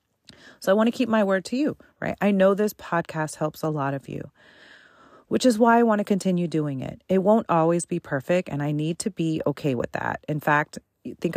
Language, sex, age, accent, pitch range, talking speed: English, female, 30-49, American, 160-220 Hz, 230 wpm